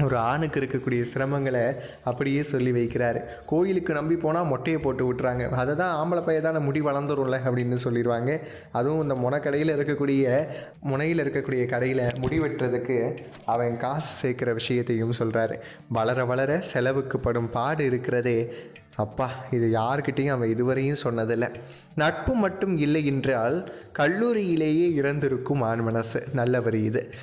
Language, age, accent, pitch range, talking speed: Tamil, 20-39, native, 120-150 Hz, 120 wpm